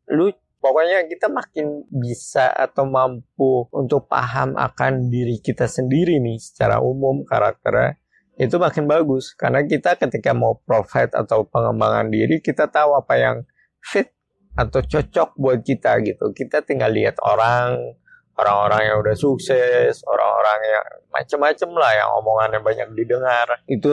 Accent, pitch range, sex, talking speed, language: native, 115-155 Hz, male, 140 wpm, Indonesian